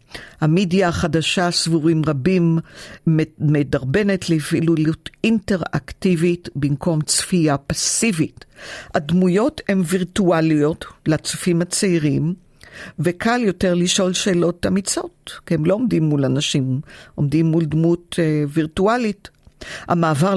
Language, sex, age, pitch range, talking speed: Hebrew, female, 50-69, 145-175 Hz, 90 wpm